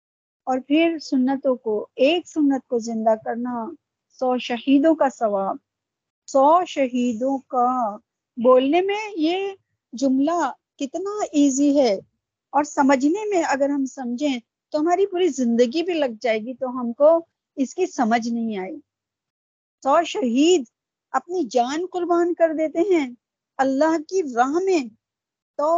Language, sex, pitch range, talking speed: Urdu, female, 255-330 Hz, 135 wpm